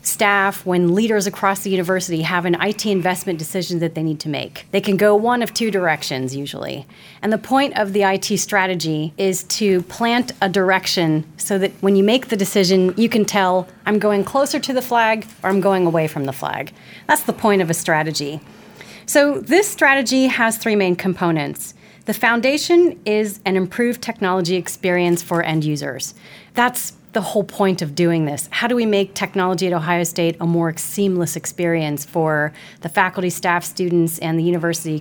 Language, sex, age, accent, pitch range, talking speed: English, female, 30-49, American, 170-210 Hz, 185 wpm